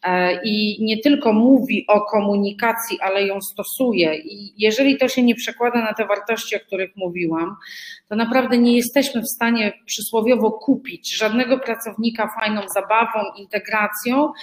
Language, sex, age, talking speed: Polish, female, 30-49, 140 wpm